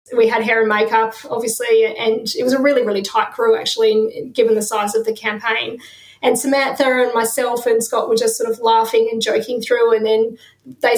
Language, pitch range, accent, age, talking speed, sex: English, 220-260 Hz, Australian, 20-39, 210 wpm, female